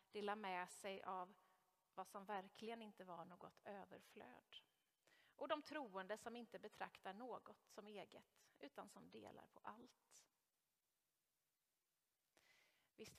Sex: female